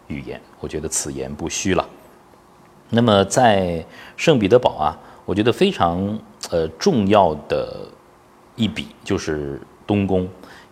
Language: Chinese